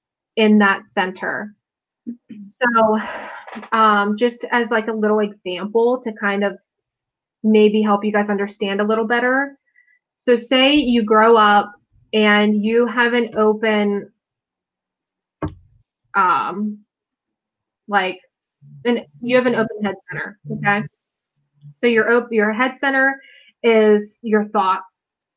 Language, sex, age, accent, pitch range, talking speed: English, female, 20-39, American, 200-230 Hz, 120 wpm